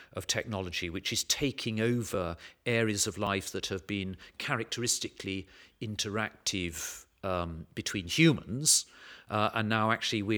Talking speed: 125 wpm